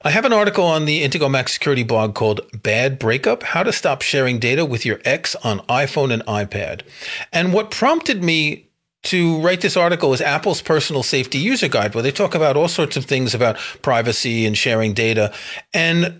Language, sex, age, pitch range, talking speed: English, male, 40-59, 130-180 Hz, 195 wpm